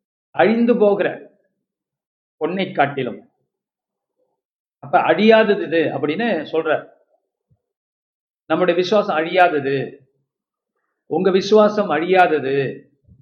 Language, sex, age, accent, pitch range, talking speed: Tamil, male, 50-69, native, 160-220 Hz, 70 wpm